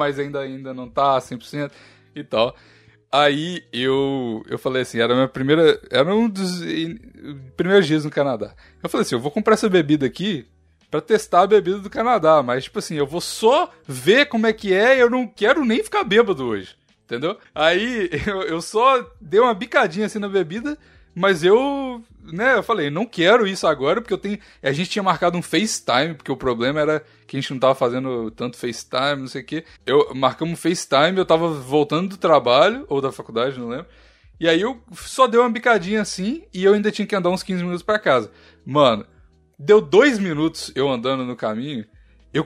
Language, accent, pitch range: Portuguese, Brazilian, 130-195 Hz